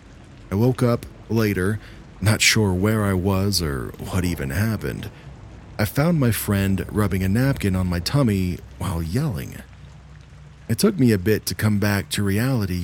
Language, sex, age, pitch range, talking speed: English, male, 40-59, 90-110 Hz, 165 wpm